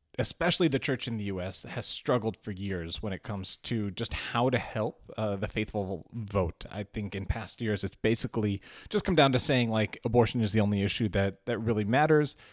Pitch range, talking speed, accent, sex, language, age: 100-120 Hz, 210 wpm, American, male, English, 30-49